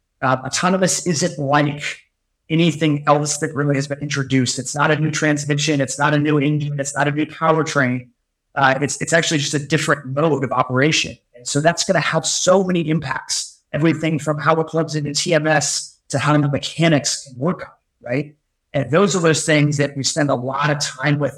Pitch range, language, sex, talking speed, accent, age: 145-170 Hz, English, male, 205 wpm, American, 30-49